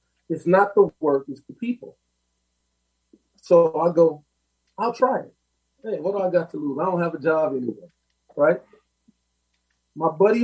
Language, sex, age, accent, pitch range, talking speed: English, male, 40-59, American, 145-225 Hz, 165 wpm